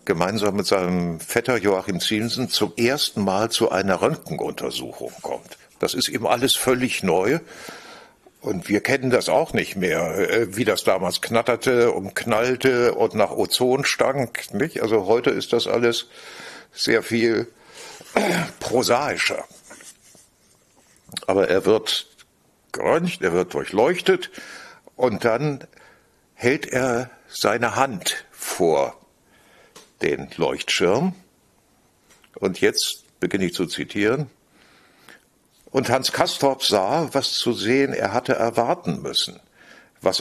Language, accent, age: German, German, 60-79